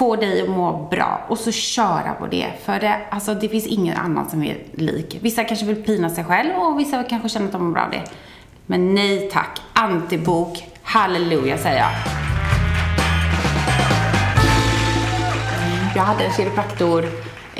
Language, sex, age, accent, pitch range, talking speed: English, female, 30-49, Swedish, 155-215 Hz, 155 wpm